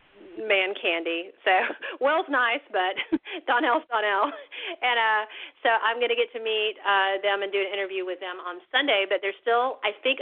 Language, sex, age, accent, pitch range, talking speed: English, female, 40-59, American, 185-210 Hz, 190 wpm